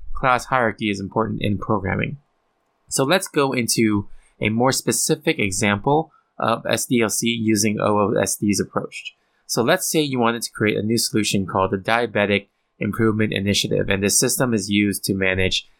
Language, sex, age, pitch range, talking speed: English, male, 20-39, 105-130 Hz, 155 wpm